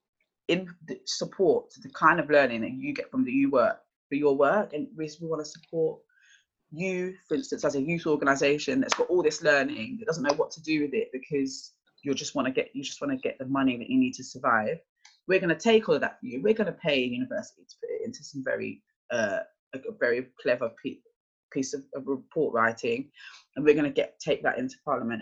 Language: English